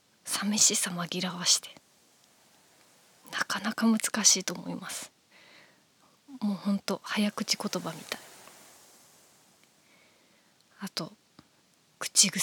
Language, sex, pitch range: Japanese, female, 190-225 Hz